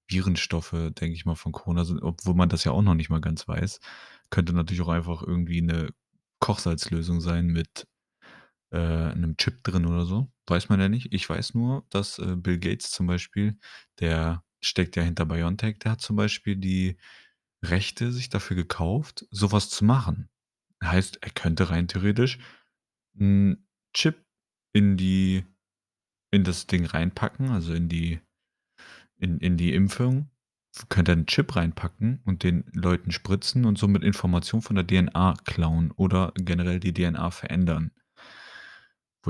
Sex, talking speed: male, 160 wpm